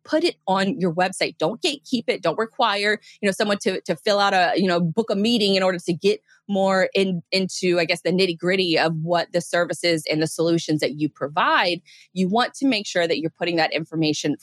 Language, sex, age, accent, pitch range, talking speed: English, female, 20-39, American, 165-215 Hz, 230 wpm